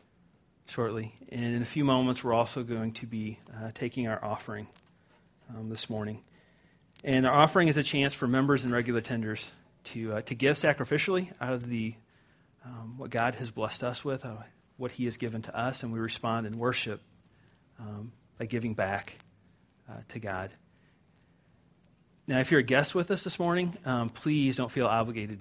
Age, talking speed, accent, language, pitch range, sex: 40-59, 180 wpm, American, English, 110-130 Hz, male